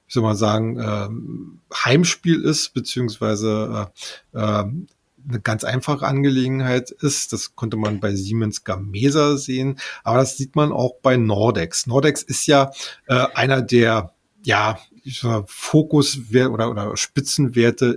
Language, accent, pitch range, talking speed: German, German, 110-140 Hz, 135 wpm